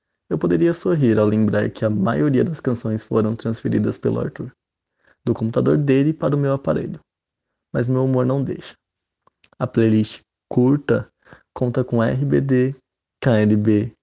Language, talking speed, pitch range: Portuguese, 140 wpm, 110-145 Hz